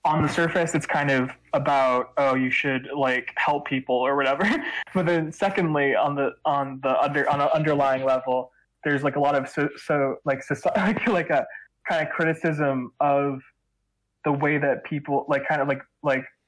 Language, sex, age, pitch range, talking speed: English, male, 20-39, 130-155 Hz, 185 wpm